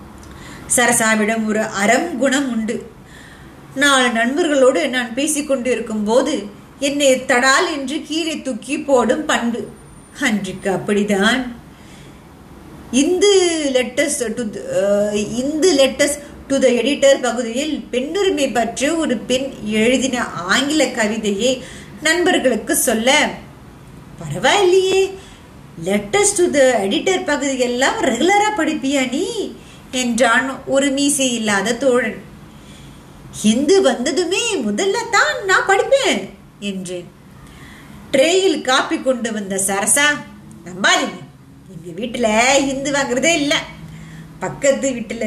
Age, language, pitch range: 20-39, Tamil, 225-285 Hz